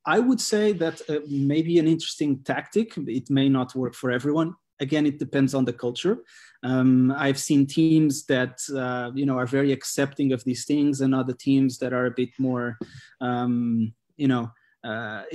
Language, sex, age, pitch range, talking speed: English, male, 20-39, 125-150 Hz, 185 wpm